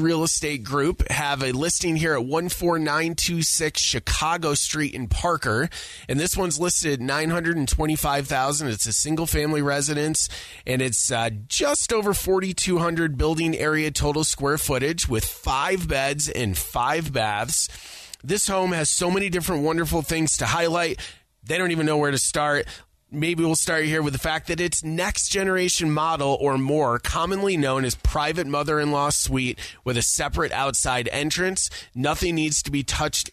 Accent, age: American, 30-49